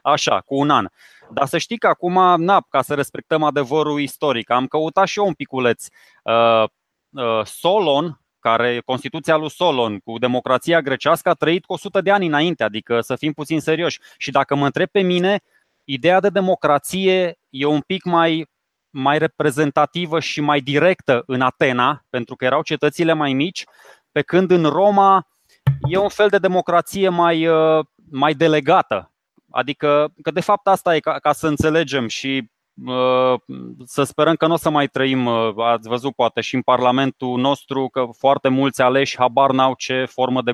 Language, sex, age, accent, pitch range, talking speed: Romanian, male, 20-39, native, 130-185 Hz, 170 wpm